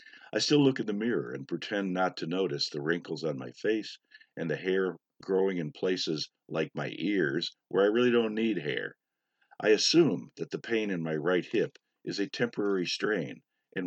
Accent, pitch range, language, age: American, 85-110 Hz, English, 50-69